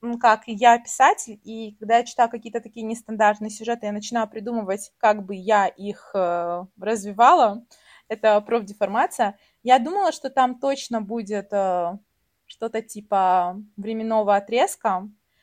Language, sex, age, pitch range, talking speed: Russian, female, 20-39, 210-260 Hz, 130 wpm